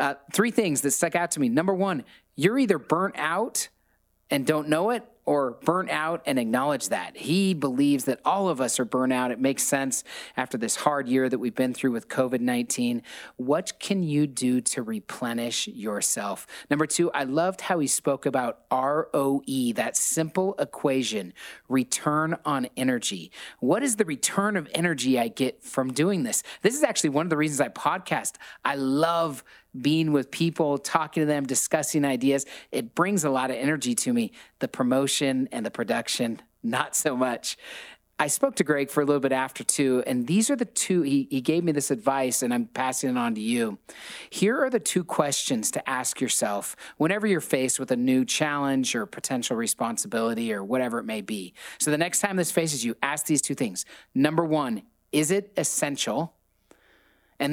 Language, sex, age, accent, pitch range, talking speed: English, male, 30-49, American, 130-190 Hz, 190 wpm